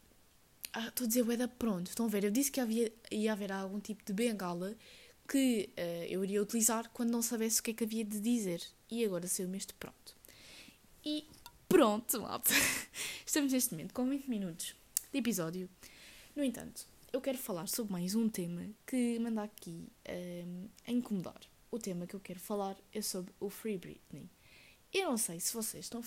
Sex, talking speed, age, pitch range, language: female, 190 wpm, 10-29, 195-235 Hz, Portuguese